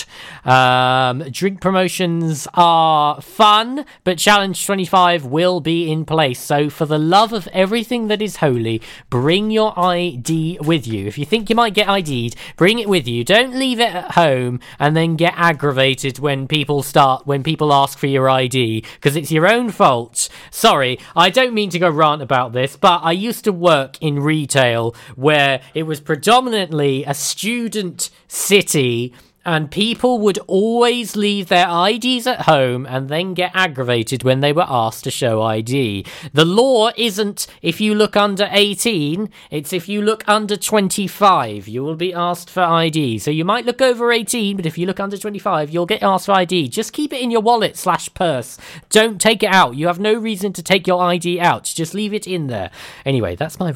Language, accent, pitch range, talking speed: English, British, 135-205 Hz, 190 wpm